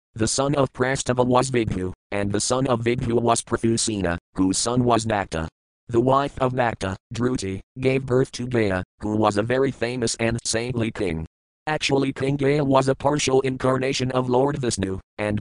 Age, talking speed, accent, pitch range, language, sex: 40-59, 175 wpm, American, 105-130 Hz, English, male